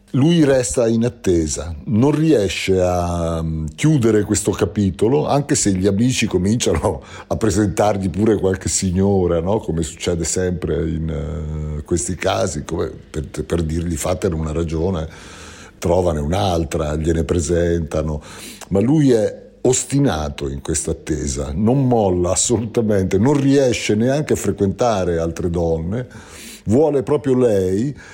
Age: 50-69